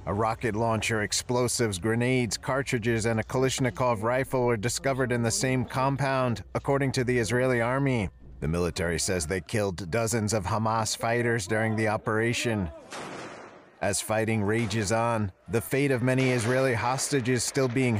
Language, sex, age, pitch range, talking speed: English, male, 40-59, 105-125 Hz, 150 wpm